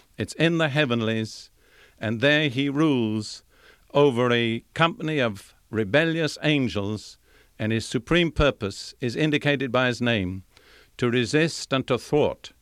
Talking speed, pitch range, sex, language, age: 135 wpm, 110-140 Hz, male, English, 50-69